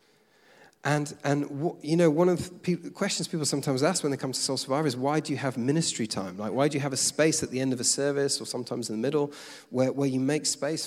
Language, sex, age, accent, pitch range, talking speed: English, male, 40-59, British, 130-165 Hz, 260 wpm